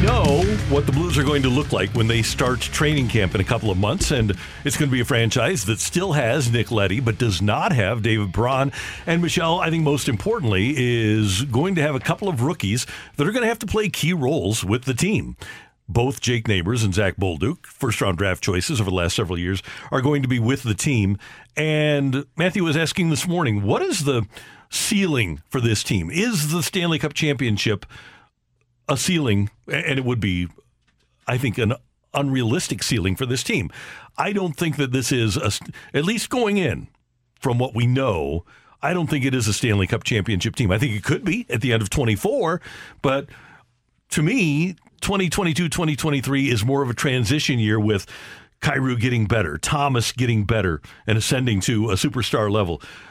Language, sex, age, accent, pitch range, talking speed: English, male, 50-69, American, 110-150 Hz, 195 wpm